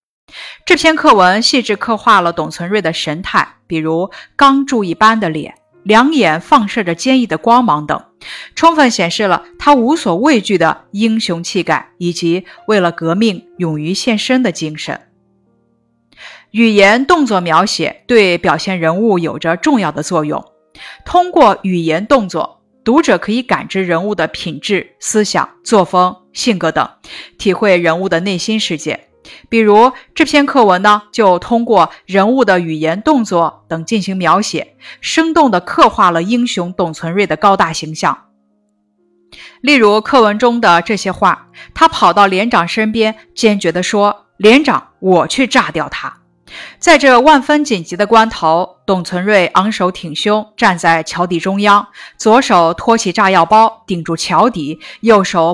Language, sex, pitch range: Chinese, female, 170-230 Hz